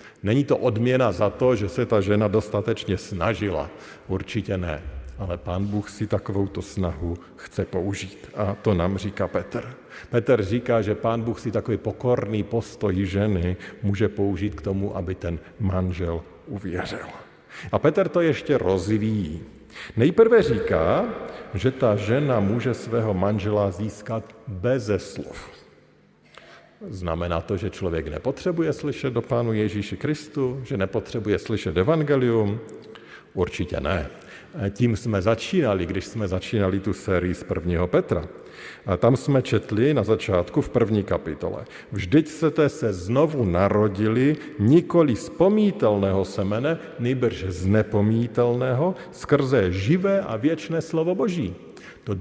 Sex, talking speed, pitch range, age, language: male, 130 wpm, 95-125 Hz, 50-69, Slovak